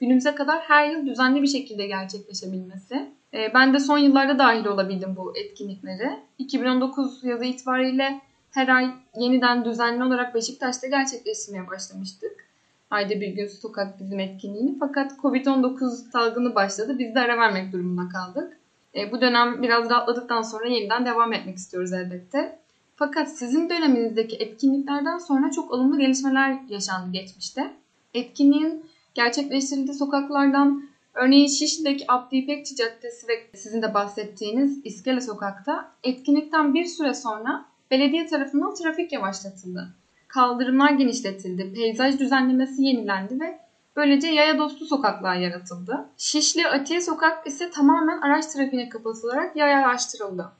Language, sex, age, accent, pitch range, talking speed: Turkish, female, 10-29, native, 225-290 Hz, 125 wpm